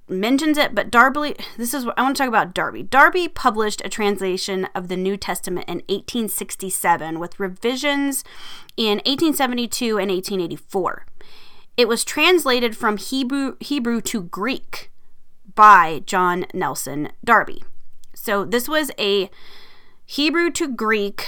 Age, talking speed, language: 20-39, 135 wpm, English